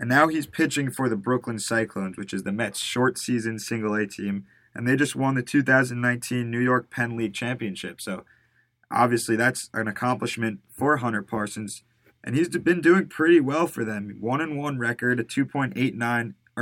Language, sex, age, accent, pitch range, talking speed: English, male, 20-39, American, 110-125 Hz, 175 wpm